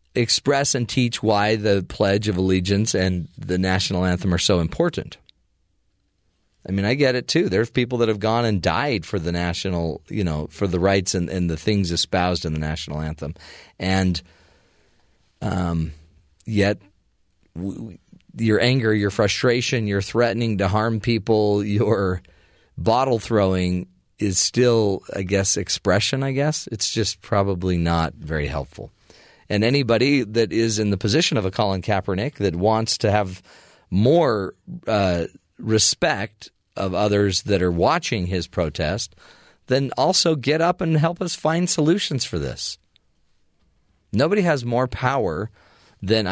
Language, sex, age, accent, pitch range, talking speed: English, male, 40-59, American, 90-120 Hz, 150 wpm